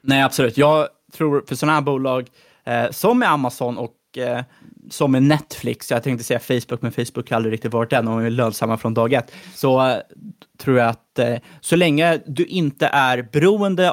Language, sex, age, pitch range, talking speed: Swedish, male, 20-39, 120-140 Hz, 200 wpm